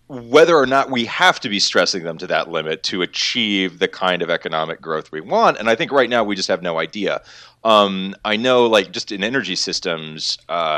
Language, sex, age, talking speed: English, male, 30-49, 225 wpm